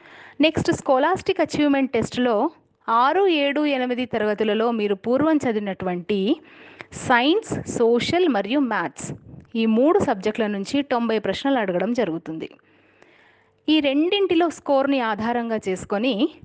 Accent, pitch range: native, 215-305 Hz